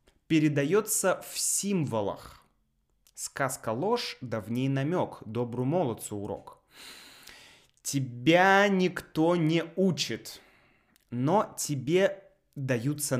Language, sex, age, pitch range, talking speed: Russian, male, 20-39, 120-180 Hz, 75 wpm